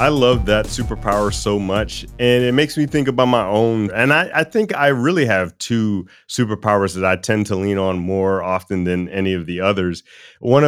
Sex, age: male, 30-49